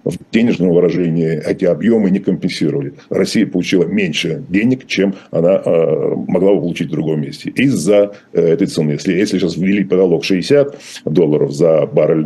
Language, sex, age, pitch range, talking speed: Russian, male, 50-69, 80-100 Hz, 145 wpm